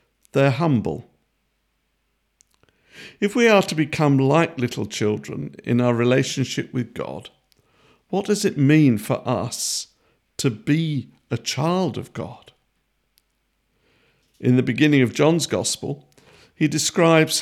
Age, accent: 50-69, British